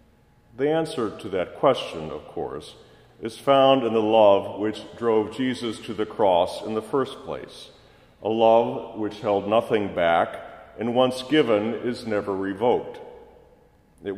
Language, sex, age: English, male, 50-69